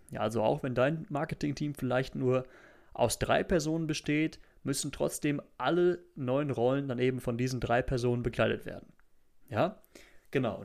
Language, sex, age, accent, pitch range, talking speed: German, male, 30-49, German, 125-155 Hz, 150 wpm